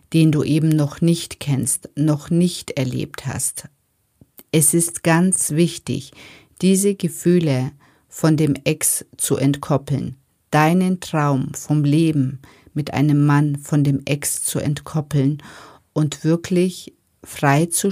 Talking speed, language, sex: 125 wpm, German, female